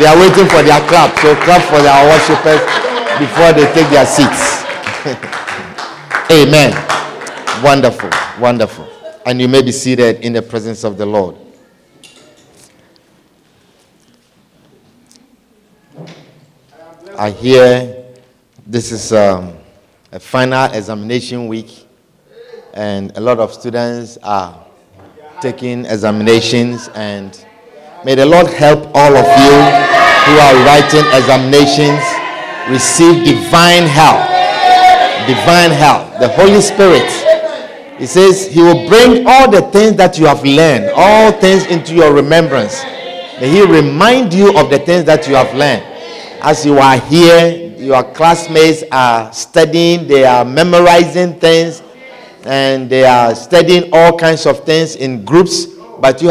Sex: male